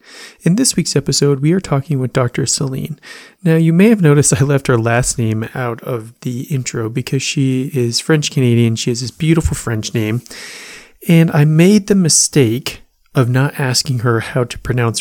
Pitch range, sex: 120-145 Hz, male